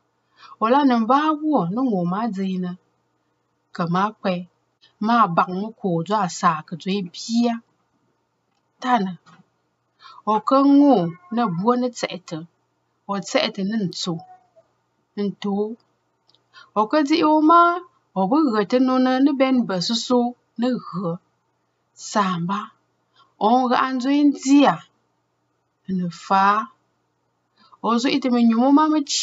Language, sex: English, female